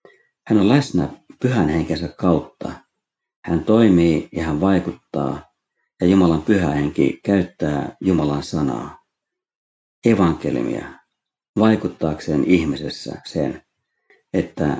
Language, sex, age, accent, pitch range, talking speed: Finnish, male, 50-69, native, 75-100 Hz, 95 wpm